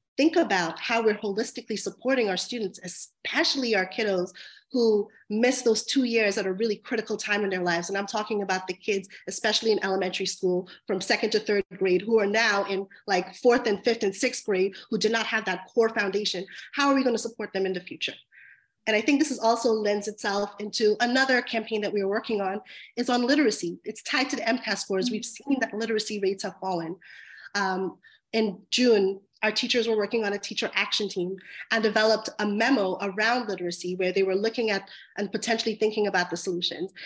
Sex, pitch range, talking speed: female, 195-240 Hz, 205 wpm